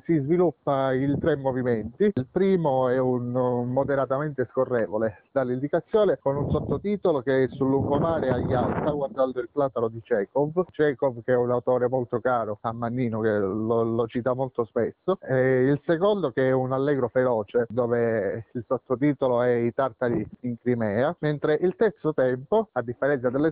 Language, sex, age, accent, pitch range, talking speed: Italian, male, 30-49, native, 125-145 Hz, 165 wpm